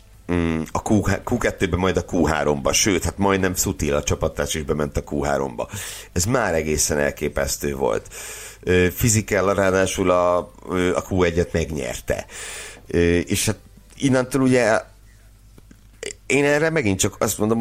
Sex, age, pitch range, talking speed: male, 60-79, 75-105 Hz, 125 wpm